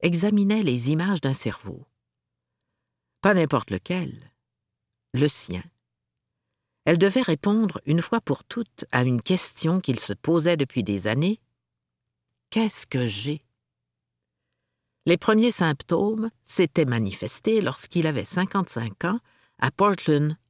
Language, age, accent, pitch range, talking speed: French, 50-69, French, 125-195 Hz, 115 wpm